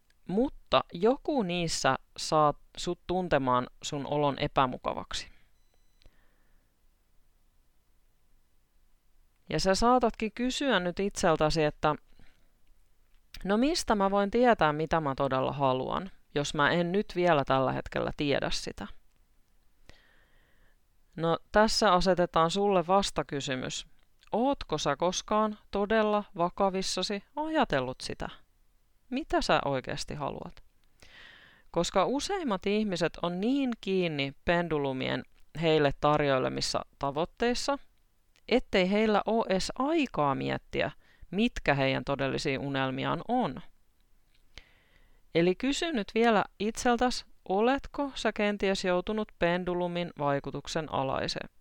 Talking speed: 95 wpm